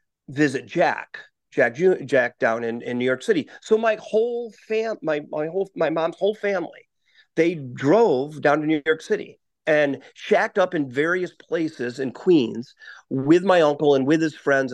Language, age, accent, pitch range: English, 40-59, American, 130-175 Hz